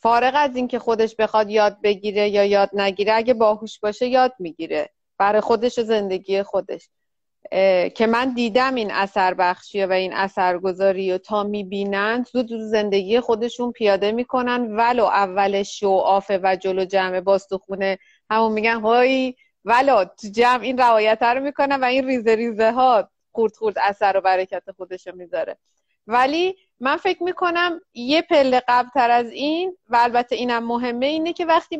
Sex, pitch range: female, 200-255 Hz